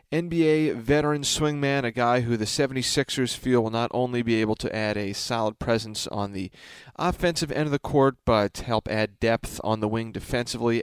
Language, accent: English, American